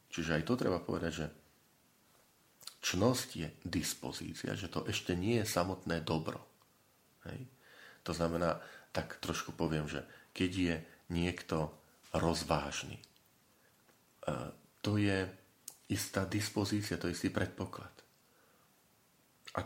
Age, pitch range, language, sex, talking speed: 40-59, 80-100 Hz, Slovak, male, 110 wpm